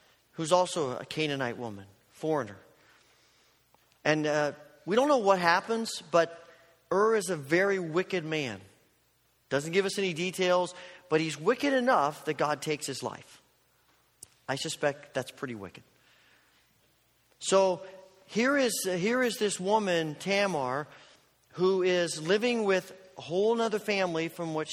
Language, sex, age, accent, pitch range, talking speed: English, male, 40-59, American, 155-195 Hz, 140 wpm